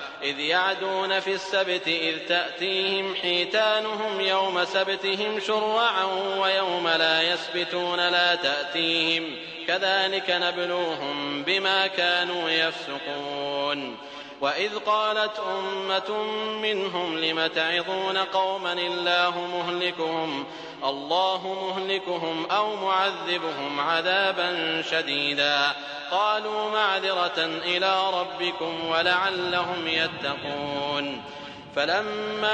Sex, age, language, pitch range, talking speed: male, 30-49, English, 160-190 Hz, 75 wpm